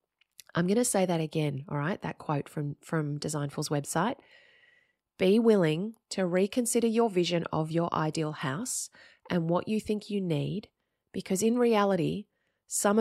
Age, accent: 30-49, Australian